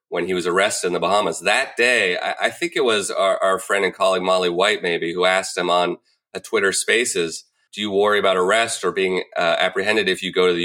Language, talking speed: English, 240 wpm